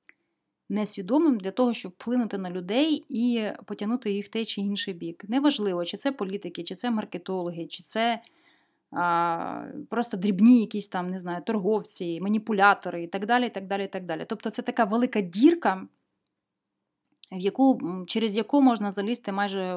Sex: female